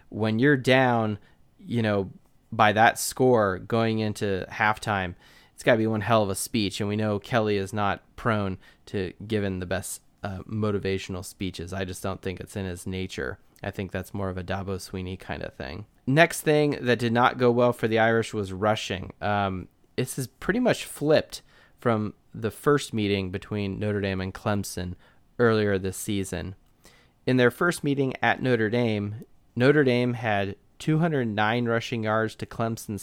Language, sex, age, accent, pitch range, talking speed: English, male, 30-49, American, 95-120 Hz, 180 wpm